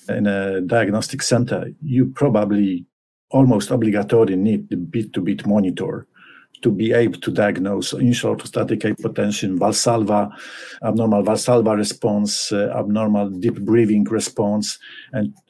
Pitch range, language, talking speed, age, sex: 105-130 Hz, English, 115 wpm, 50-69, male